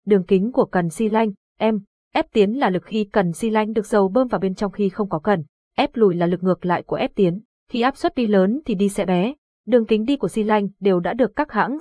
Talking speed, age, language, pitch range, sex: 275 wpm, 20-39, Vietnamese, 185-230 Hz, female